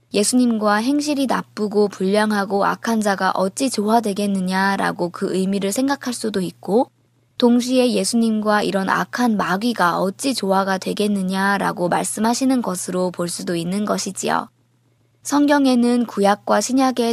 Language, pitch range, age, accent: Korean, 185-240 Hz, 20-39, native